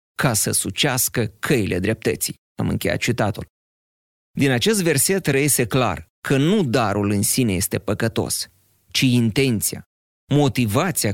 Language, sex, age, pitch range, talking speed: Romanian, male, 30-49, 105-135 Hz, 125 wpm